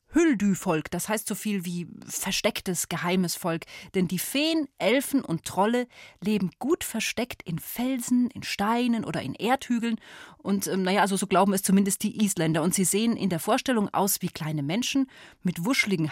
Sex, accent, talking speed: female, German, 175 wpm